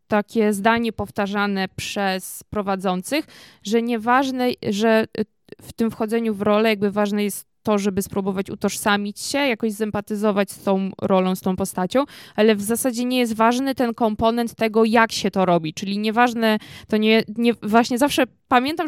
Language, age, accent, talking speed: Polish, 20-39, native, 160 wpm